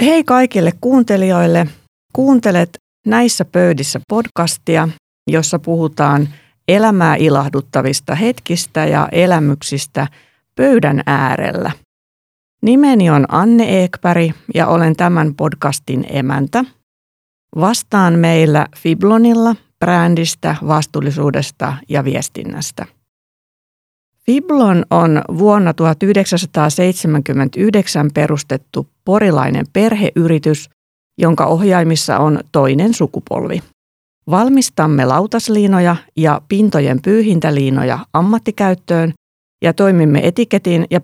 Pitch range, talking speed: 150-200 Hz, 80 wpm